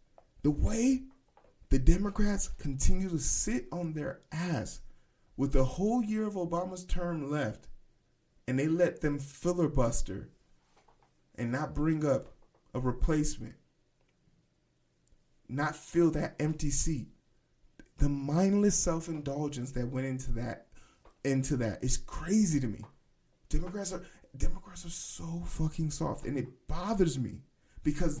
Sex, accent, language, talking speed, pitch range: male, American, English, 125 wpm, 135-180 Hz